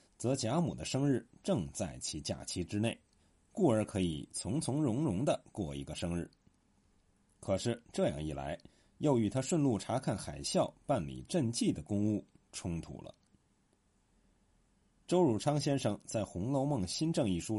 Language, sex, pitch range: Chinese, male, 85-140 Hz